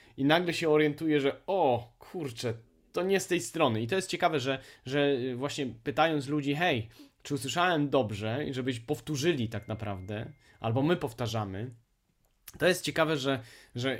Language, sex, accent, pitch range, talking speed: Polish, male, native, 115-150 Hz, 165 wpm